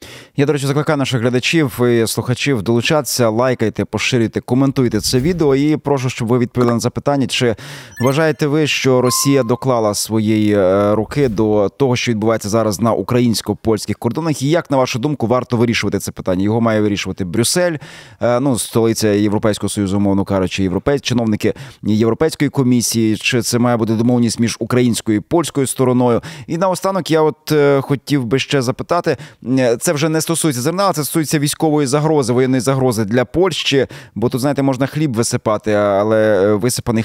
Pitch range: 115-145 Hz